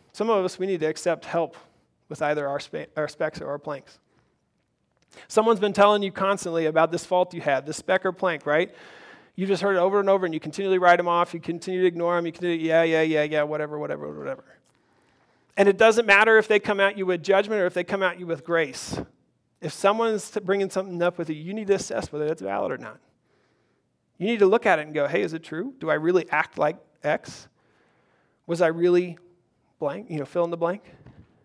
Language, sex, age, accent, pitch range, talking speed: English, male, 40-59, American, 165-215 Hz, 235 wpm